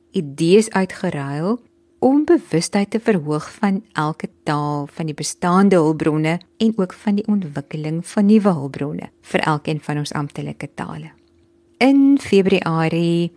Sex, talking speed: female, 130 wpm